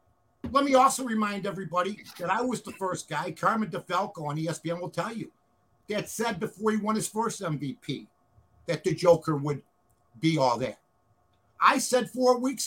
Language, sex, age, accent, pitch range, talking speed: English, male, 50-69, American, 160-235 Hz, 175 wpm